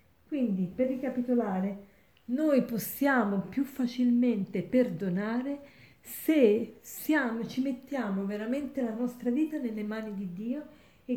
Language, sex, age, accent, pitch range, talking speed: Italian, female, 40-59, native, 210-265 Hz, 105 wpm